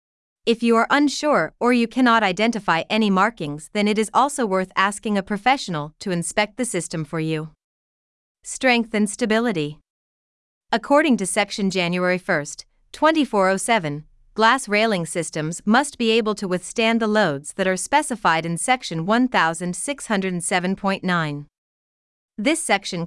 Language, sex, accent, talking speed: English, female, American, 135 wpm